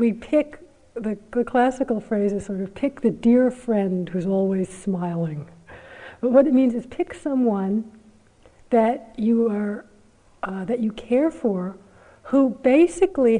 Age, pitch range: 50-69, 180-230 Hz